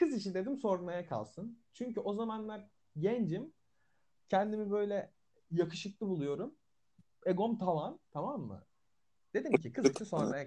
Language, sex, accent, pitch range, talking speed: Turkish, male, native, 125-200 Hz, 125 wpm